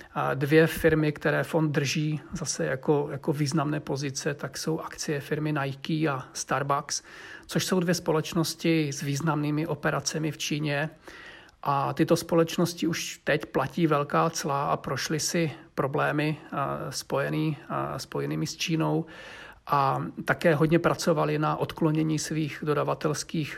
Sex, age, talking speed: male, 40-59, 130 wpm